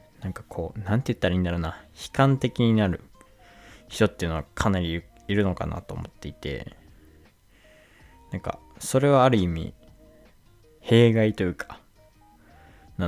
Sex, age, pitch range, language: male, 20-39, 85-110 Hz, Japanese